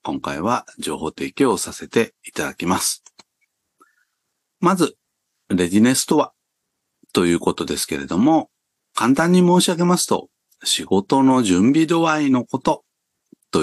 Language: Japanese